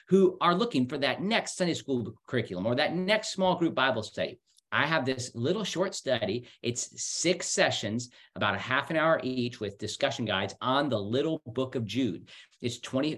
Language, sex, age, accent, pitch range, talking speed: English, male, 40-59, American, 120-180 Hz, 190 wpm